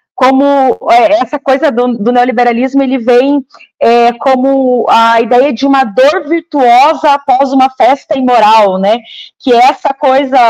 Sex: female